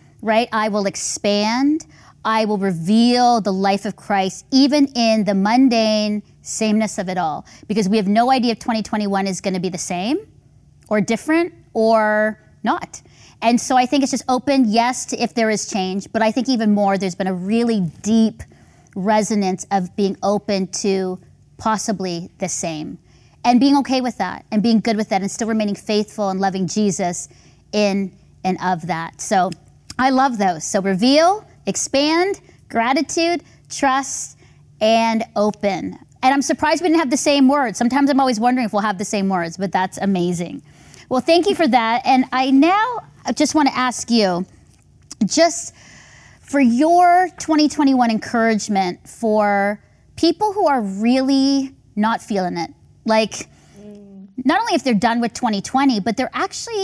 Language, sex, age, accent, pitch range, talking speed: English, female, 30-49, American, 195-260 Hz, 165 wpm